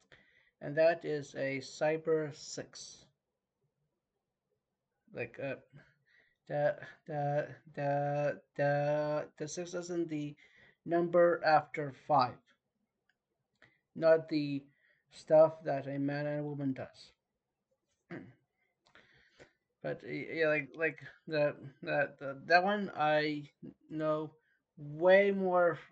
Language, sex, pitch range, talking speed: English, male, 140-165 Hz, 90 wpm